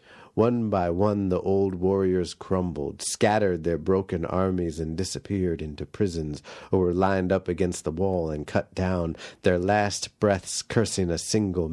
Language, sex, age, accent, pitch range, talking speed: English, male, 50-69, American, 85-105 Hz, 160 wpm